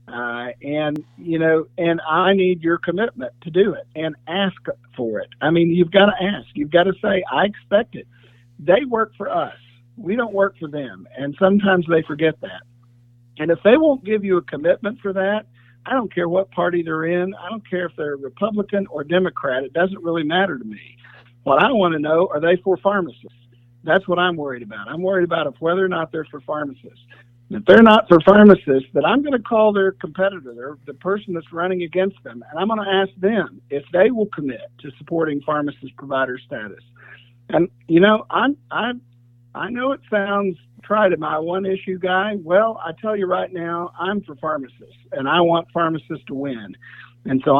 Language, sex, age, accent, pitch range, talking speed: English, male, 50-69, American, 135-190 Hz, 205 wpm